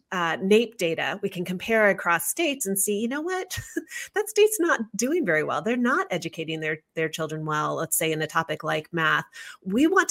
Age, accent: 30-49, American